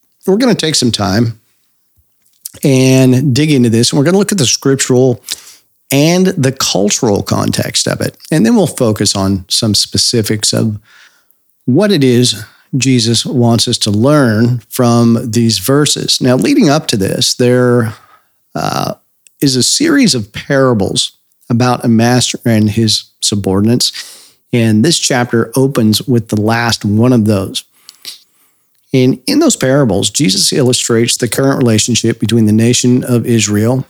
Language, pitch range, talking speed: English, 110-135 Hz, 150 wpm